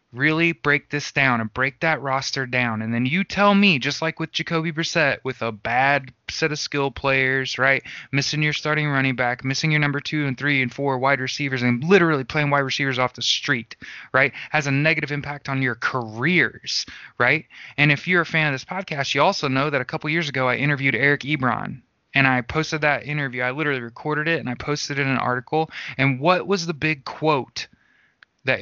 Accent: American